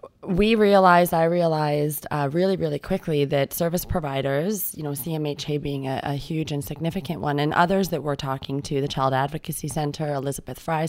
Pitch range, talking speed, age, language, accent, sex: 145-170 Hz, 180 wpm, 20-39, English, American, female